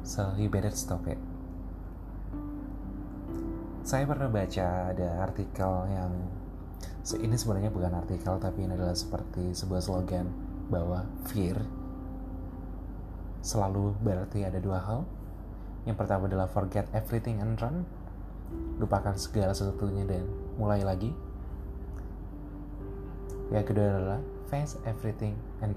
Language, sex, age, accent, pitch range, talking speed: Indonesian, male, 20-39, native, 90-105 Hz, 110 wpm